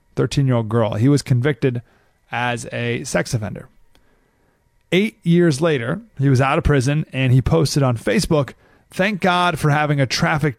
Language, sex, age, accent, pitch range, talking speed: English, male, 30-49, American, 115-145 Hz, 170 wpm